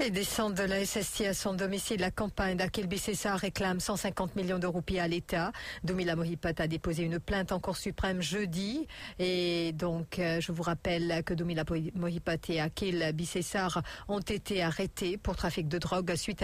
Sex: female